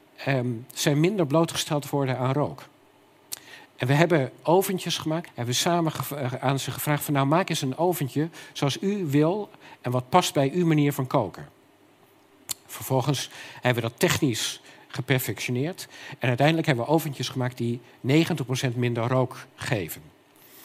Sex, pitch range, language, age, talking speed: male, 125-160 Hz, Dutch, 50-69, 150 wpm